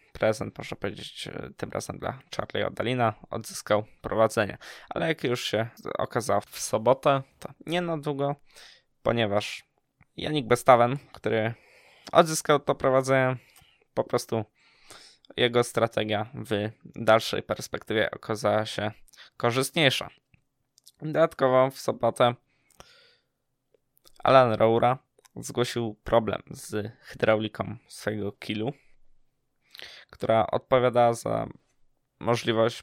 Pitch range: 115-140 Hz